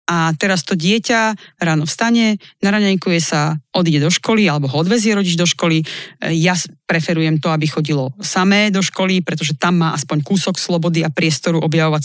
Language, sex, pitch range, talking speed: Slovak, female, 160-200 Hz, 170 wpm